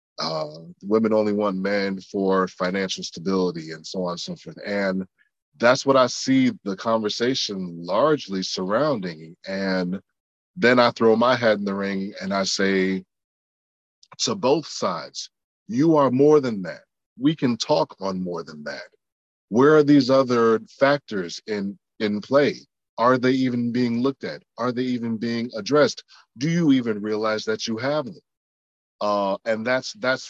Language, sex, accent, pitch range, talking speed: English, male, American, 95-120 Hz, 160 wpm